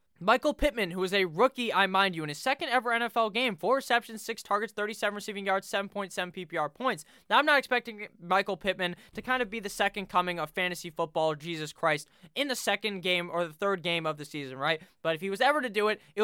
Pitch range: 170-215 Hz